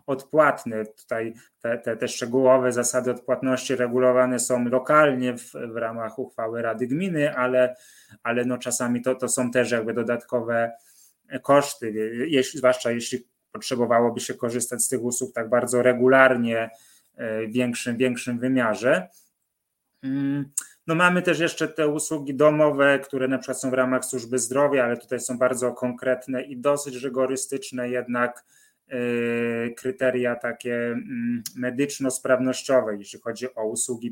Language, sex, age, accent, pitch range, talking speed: Polish, male, 20-39, native, 120-150 Hz, 130 wpm